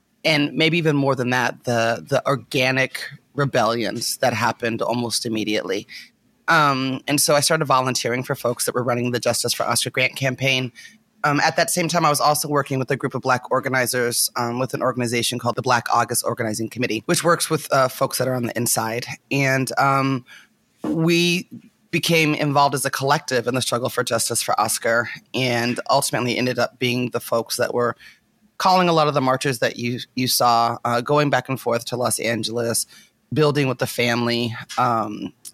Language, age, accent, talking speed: English, 30-49, American, 190 wpm